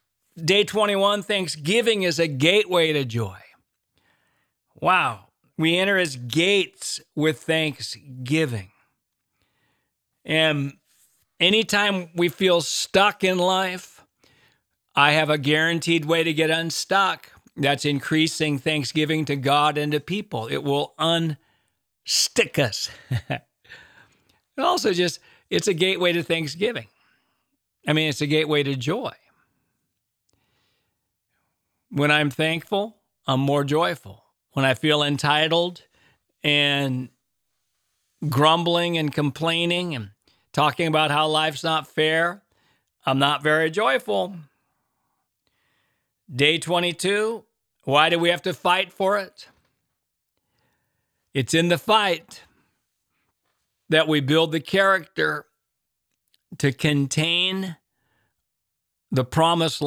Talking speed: 105 wpm